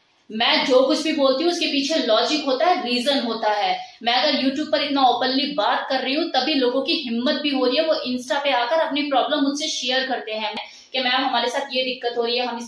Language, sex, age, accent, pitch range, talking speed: Hindi, female, 20-39, native, 245-300 Hz, 230 wpm